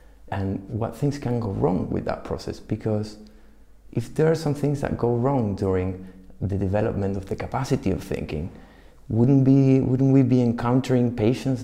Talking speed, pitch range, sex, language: 170 wpm, 95-125 Hz, male, English